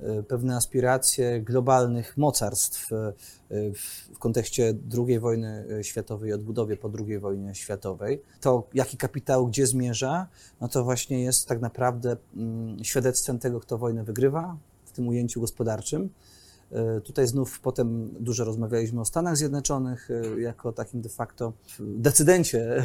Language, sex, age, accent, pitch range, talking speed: Polish, male, 30-49, native, 115-140 Hz, 125 wpm